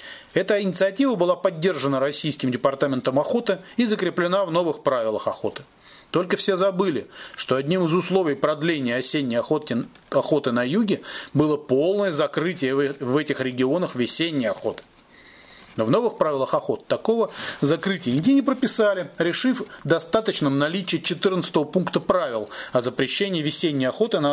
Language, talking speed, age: Russian, 135 wpm, 30-49